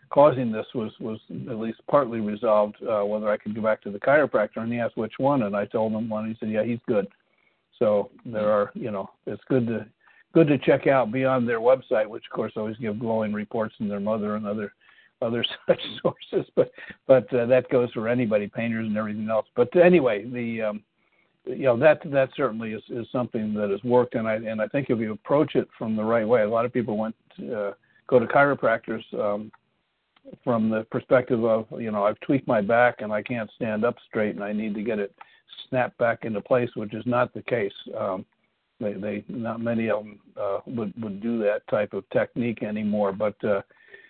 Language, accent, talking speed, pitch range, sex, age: English, American, 220 wpm, 105-125 Hz, male, 60-79